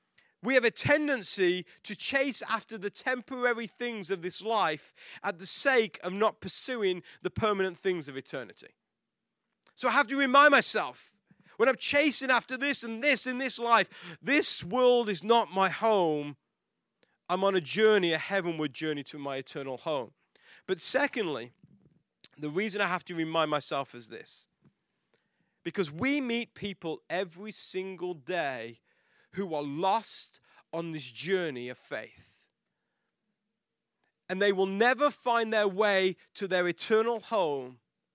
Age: 30-49